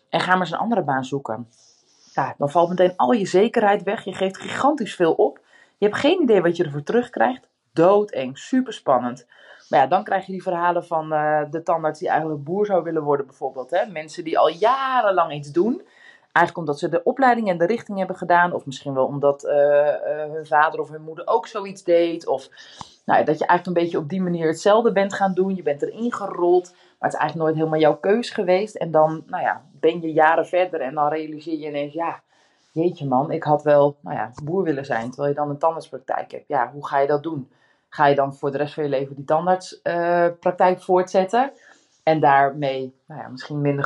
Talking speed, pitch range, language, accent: 215 wpm, 145-190 Hz, Dutch, Dutch